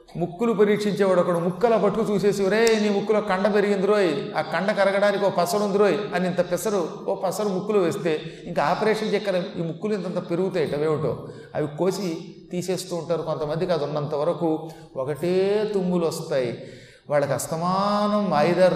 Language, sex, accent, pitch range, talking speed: Telugu, male, native, 160-200 Hz, 145 wpm